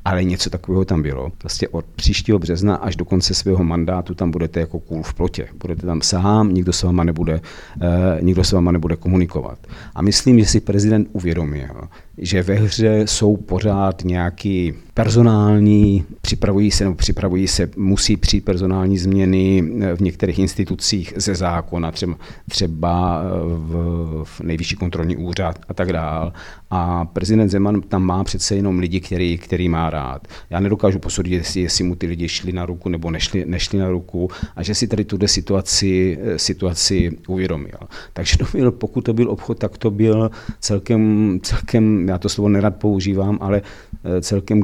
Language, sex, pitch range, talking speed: Czech, male, 90-100 Hz, 165 wpm